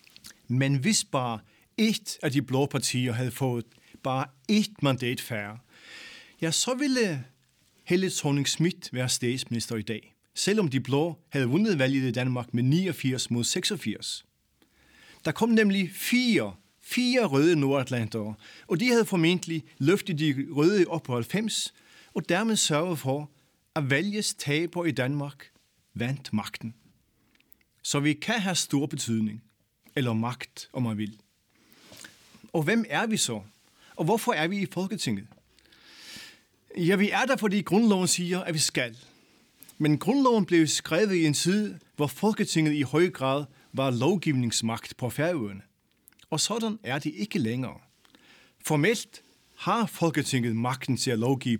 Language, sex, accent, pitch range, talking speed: Danish, male, native, 120-180 Hz, 145 wpm